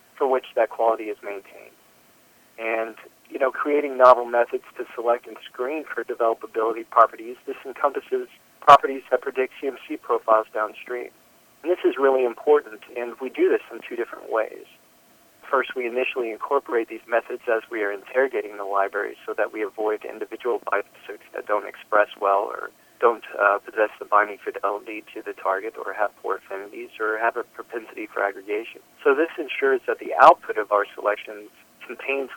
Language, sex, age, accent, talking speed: English, male, 40-59, American, 170 wpm